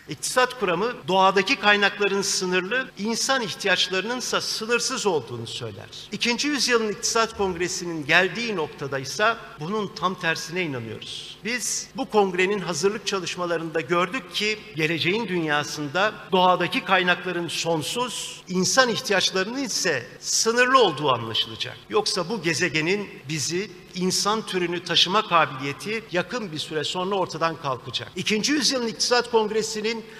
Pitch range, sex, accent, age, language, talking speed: 170-215 Hz, male, native, 50-69, Turkish, 115 wpm